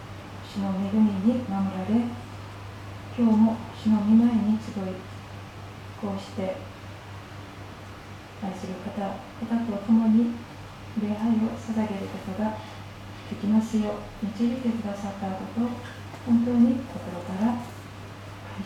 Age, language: 40-59, Japanese